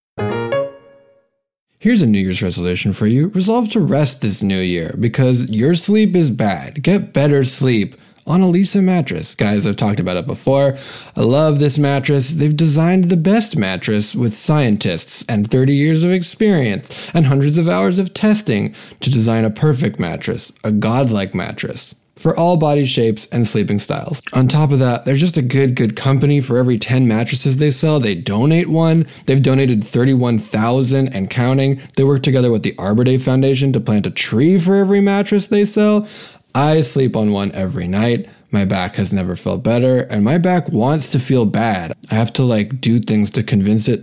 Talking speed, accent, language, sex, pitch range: 185 wpm, American, English, male, 110-170 Hz